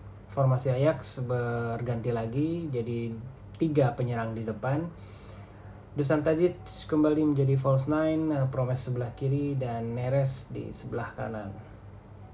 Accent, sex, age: native, male, 20-39